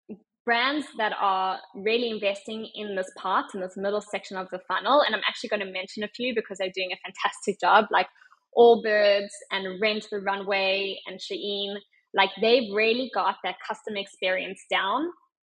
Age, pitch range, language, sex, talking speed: 20-39, 190-225 Hz, English, female, 175 wpm